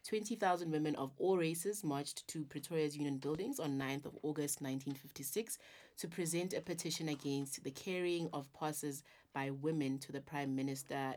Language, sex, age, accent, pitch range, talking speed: English, female, 30-49, South African, 140-170 Hz, 160 wpm